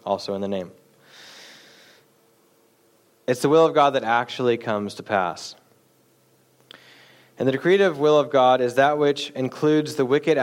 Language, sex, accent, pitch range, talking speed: English, male, American, 115-140 Hz, 150 wpm